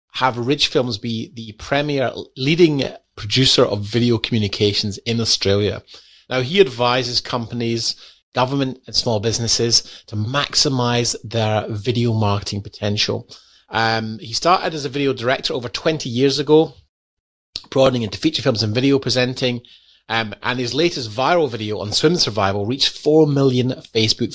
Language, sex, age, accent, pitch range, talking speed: English, male, 30-49, British, 100-130 Hz, 145 wpm